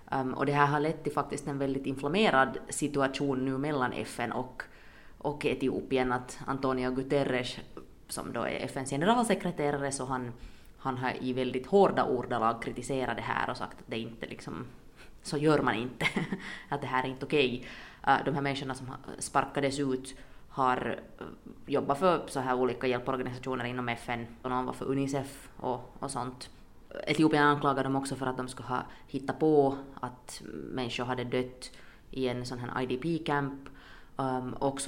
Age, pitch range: 20-39, 125-145 Hz